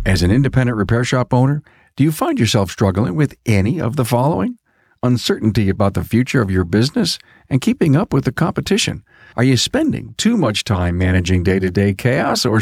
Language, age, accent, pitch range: English, 50-69, American, 95-130 Hz